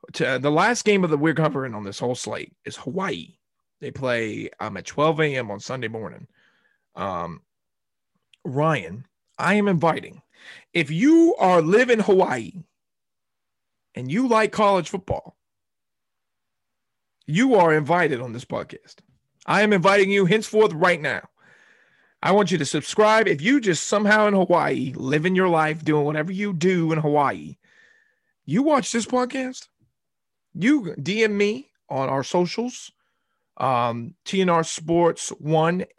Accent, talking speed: American, 140 wpm